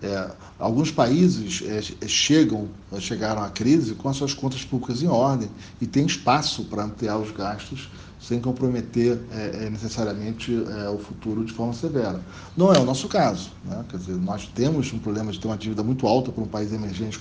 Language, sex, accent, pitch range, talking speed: Portuguese, male, Brazilian, 105-130 Hz, 190 wpm